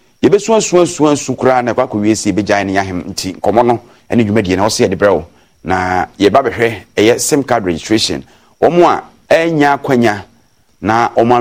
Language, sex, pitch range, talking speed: English, male, 95-125 Hz, 165 wpm